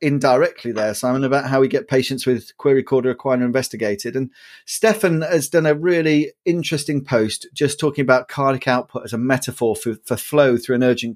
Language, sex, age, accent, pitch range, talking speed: English, male, 40-59, British, 130-155 Hz, 190 wpm